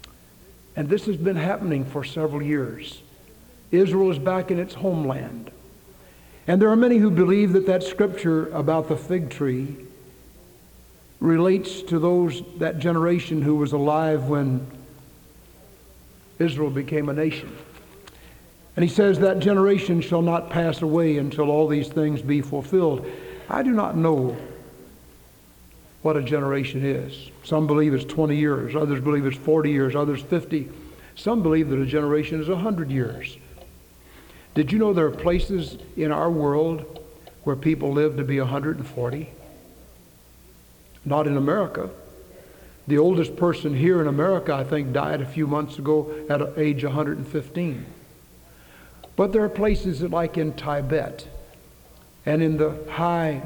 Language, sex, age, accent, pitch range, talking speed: English, male, 60-79, American, 140-170 Hz, 145 wpm